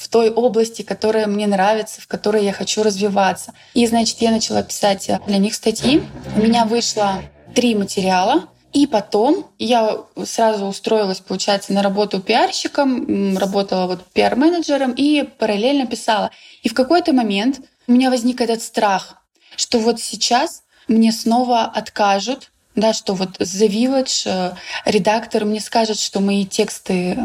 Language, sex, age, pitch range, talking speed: Russian, female, 20-39, 200-250 Hz, 145 wpm